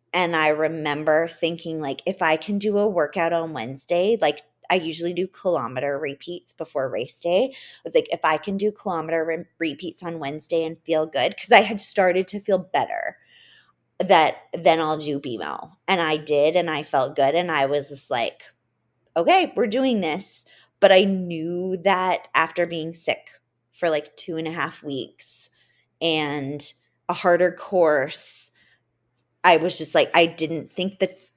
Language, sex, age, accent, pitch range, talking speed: English, female, 20-39, American, 150-185 Hz, 170 wpm